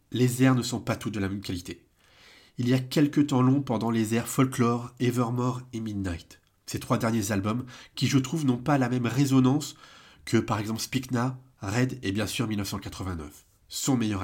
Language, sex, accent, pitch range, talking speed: French, male, French, 105-140 Hz, 195 wpm